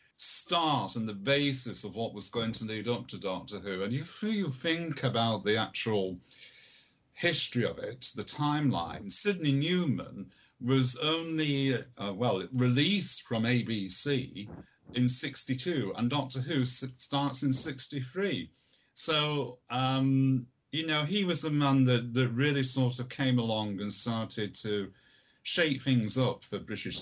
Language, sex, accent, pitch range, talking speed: English, male, British, 110-140 Hz, 145 wpm